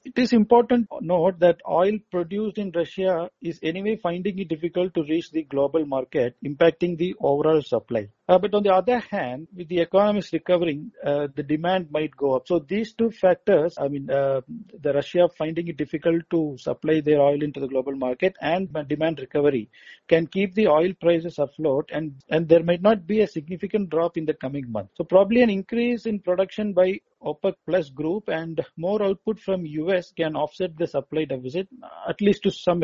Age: 50-69